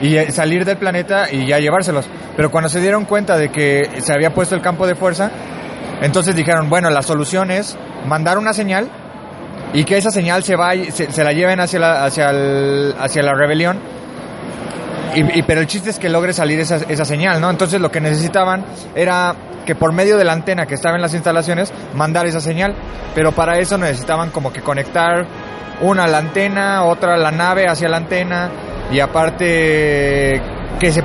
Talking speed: 195 wpm